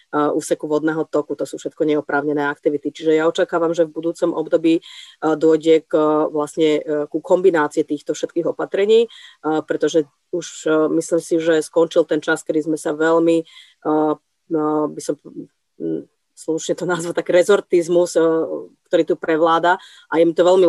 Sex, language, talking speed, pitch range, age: female, Slovak, 170 wpm, 155-175 Hz, 30-49